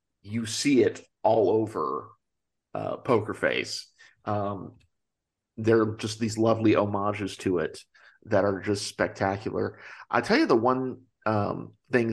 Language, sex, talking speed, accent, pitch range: English, male, 140 wpm, American, 105-120 Hz